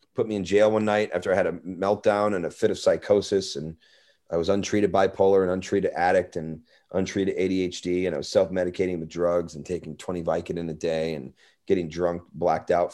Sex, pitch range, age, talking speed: male, 90-105 Hz, 30-49, 210 wpm